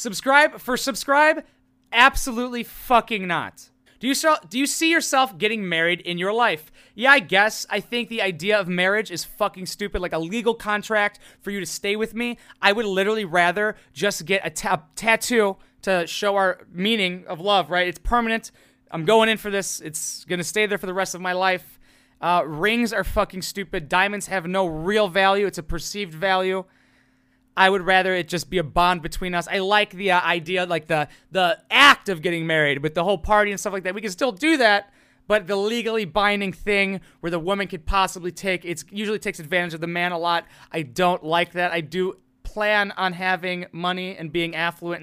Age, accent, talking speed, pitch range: 20-39, American, 205 wpm, 170-210 Hz